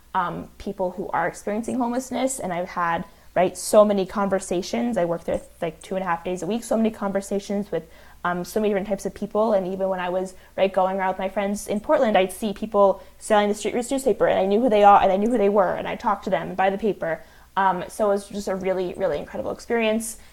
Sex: female